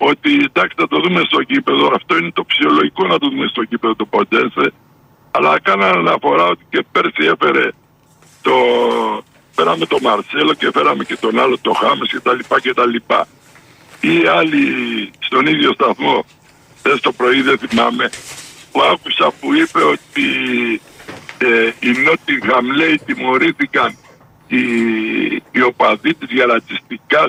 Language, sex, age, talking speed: Greek, male, 60-79, 145 wpm